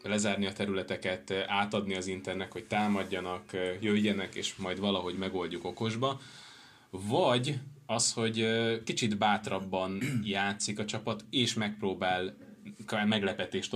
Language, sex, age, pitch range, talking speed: Hungarian, male, 20-39, 95-115 Hz, 110 wpm